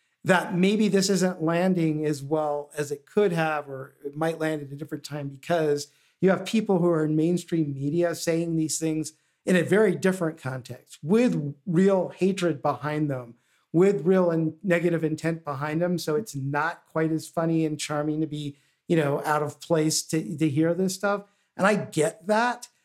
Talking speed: 190 wpm